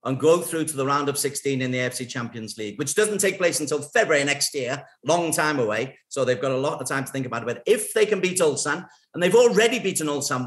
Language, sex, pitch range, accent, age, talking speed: English, male, 130-175 Hz, British, 50-69, 265 wpm